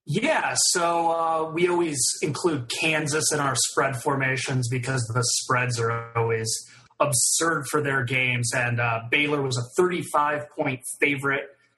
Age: 30-49